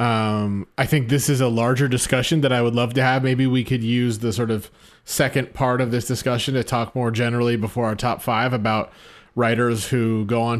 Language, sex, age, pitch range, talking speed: English, male, 30-49, 115-140 Hz, 220 wpm